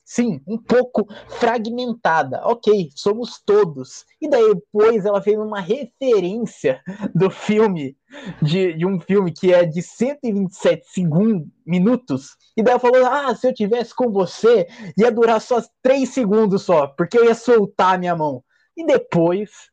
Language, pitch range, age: Portuguese, 185-240 Hz, 20-39